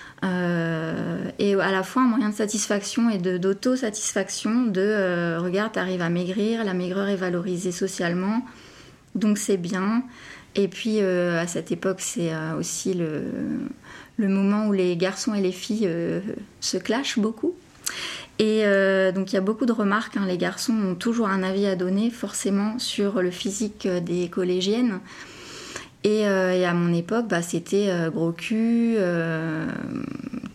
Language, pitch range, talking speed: French, 180-220 Hz, 170 wpm